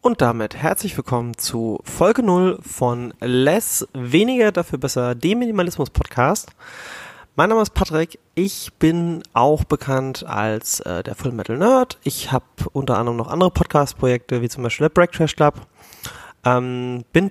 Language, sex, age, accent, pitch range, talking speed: German, male, 30-49, German, 125-160 Hz, 140 wpm